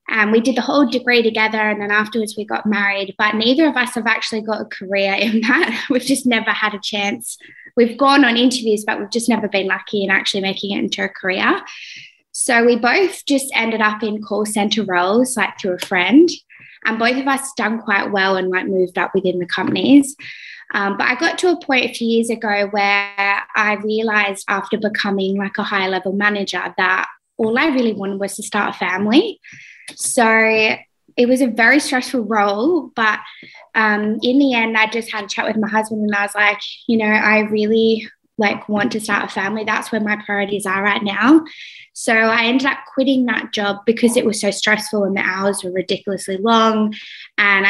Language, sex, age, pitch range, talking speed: English, female, 20-39, 200-235 Hz, 210 wpm